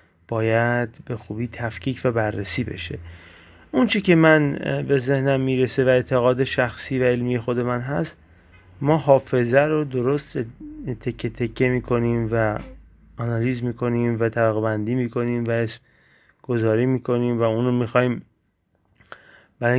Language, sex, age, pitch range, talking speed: Persian, male, 30-49, 110-130 Hz, 150 wpm